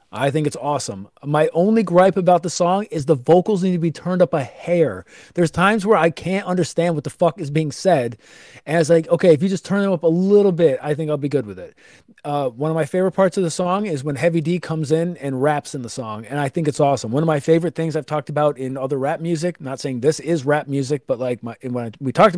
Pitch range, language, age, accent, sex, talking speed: 140-170 Hz, English, 30-49, American, male, 270 wpm